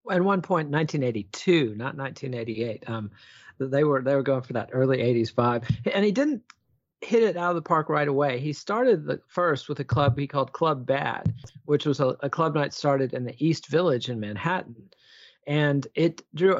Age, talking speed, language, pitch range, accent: 40-59, 200 wpm, English, 130-165 Hz, American